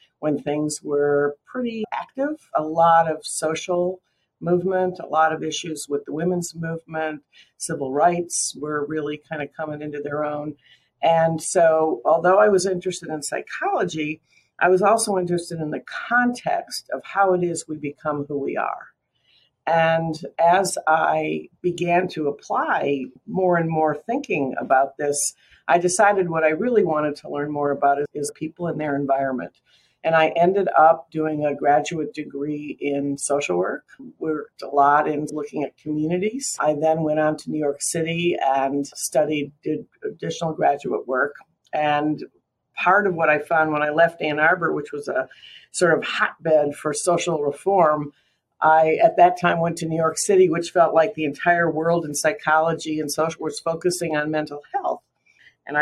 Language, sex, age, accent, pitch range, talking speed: English, female, 50-69, American, 150-175 Hz, 170 wpm